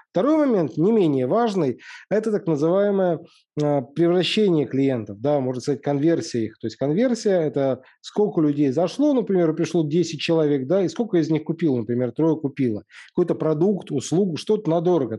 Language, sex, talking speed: Russian, male, 150 wpm